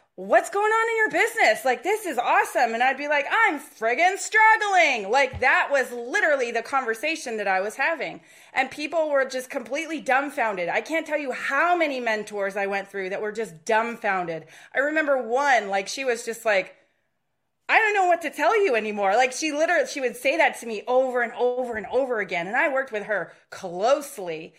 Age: 30-49